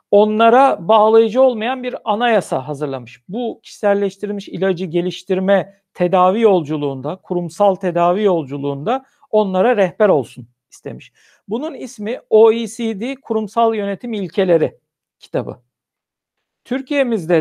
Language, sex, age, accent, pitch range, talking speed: Turkish, male, 60-79, native, 175-225 Hz, 95 wpm